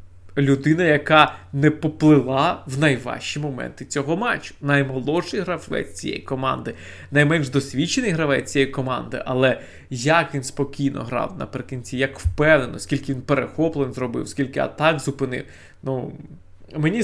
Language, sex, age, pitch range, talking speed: Ukrainian, male, 20-39, 130-155 Hz, 125 wpm